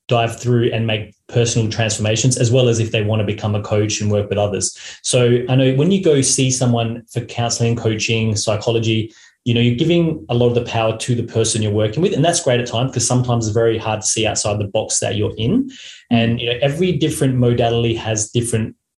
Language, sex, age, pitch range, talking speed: English, male, 20-39, 105-125 Hz, 230 wpm